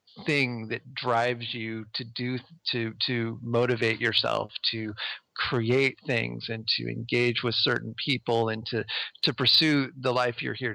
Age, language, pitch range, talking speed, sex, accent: 40-59, English, 115-135 Hz, 150 wpm, male, American